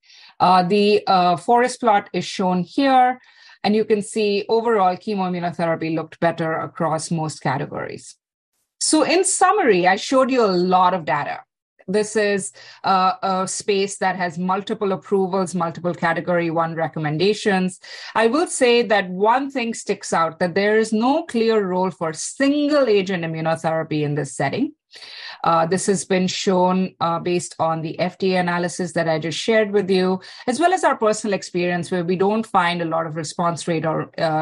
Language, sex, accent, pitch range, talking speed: English, female, Indian, 165-205 Hz, 170 wpm